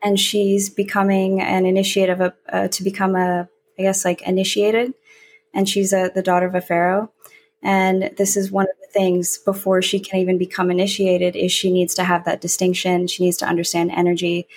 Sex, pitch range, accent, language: female, 180-210 Hz, American, English